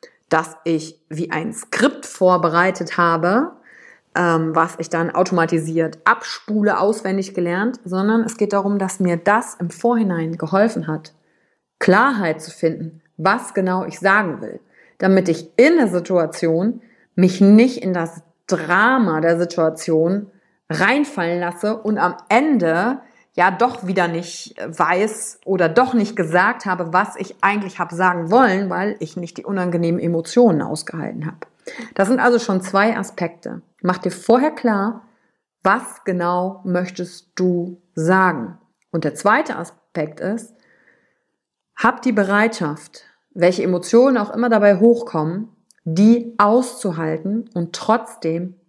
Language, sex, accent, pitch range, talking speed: German, female, German, 170-220 Hz, 135 wpm